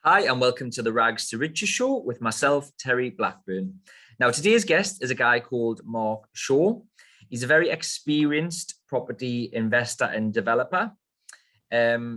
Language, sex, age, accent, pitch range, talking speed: English, male, 20-39, British, 115-130 Hz, 155 wpm